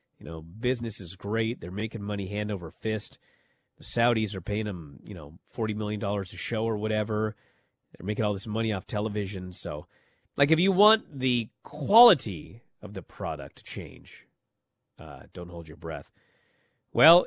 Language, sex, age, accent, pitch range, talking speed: English, male, 30-49, American, 105-150 Hz, 170 wpm